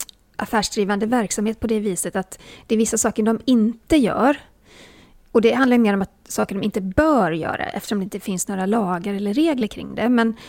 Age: 30-49